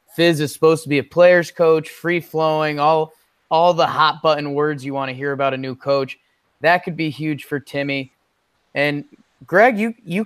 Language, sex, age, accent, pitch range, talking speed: English, male, 20-39, American, 140-185 Hz, 185 wpm